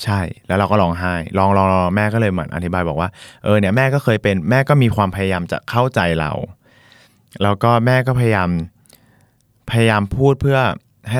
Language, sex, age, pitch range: Thai, male, 20-39, 90-115 Hz